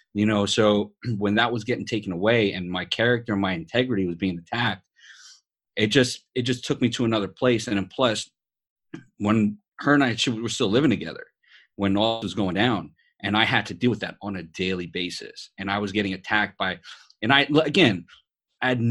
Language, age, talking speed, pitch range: English, 30-49, 205 wpm, 95-120 Hz